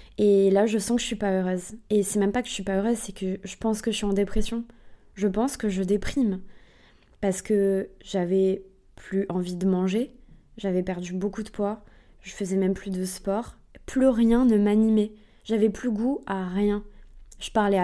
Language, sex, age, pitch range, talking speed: French, female, 20-39, 195-230 Hz, 205 wpm